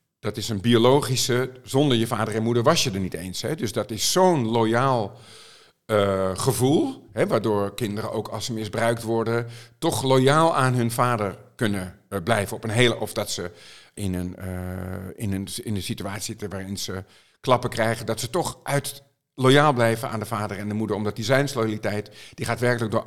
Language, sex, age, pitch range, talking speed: Dutch, male, 50-69, 105-130 Hz, 180 wpm